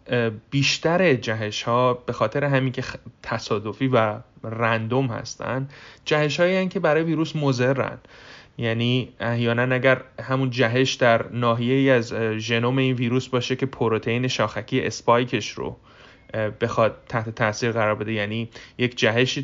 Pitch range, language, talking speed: 110-130 Hz, Persian, 135 wpm